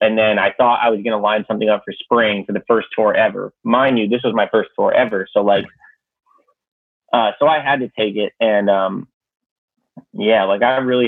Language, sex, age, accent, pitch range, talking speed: English, male, 30-49, American, 105-130 Hz, 220 wpm